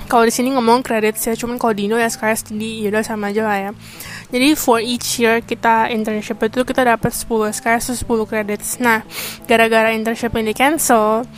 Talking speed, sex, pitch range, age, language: 185 wpm, female, 215-245 Hz, 10-29, Indonesian